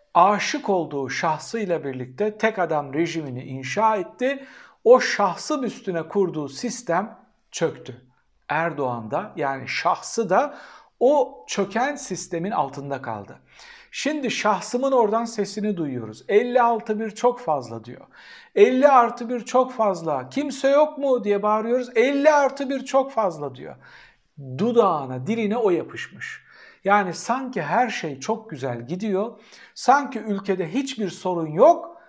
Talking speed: 125 wpm